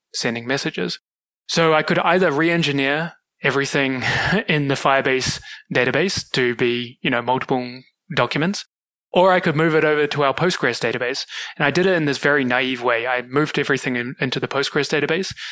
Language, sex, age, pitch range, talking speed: English, male, 20-39, 130-150 Hz, 175 wpm